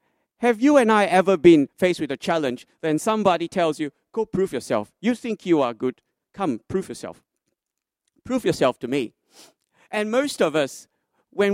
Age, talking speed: 40-59, 175 wpm